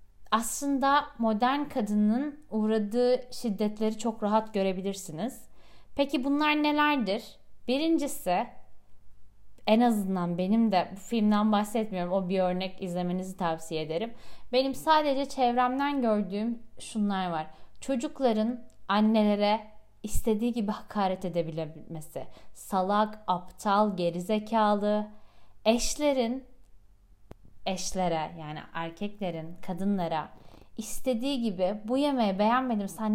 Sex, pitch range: female, 180-235 Hz